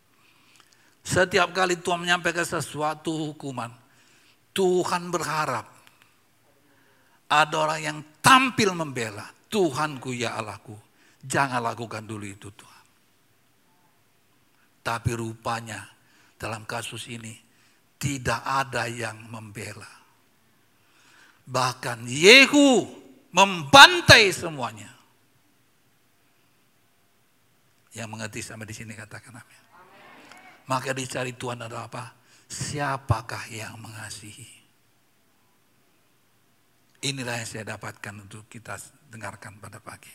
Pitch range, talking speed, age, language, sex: 115-145 Hz, 85 wpm, 50-69, Indonesian, male